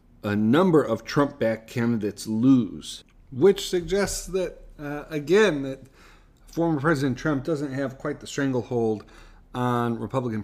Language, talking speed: English, 125 wpm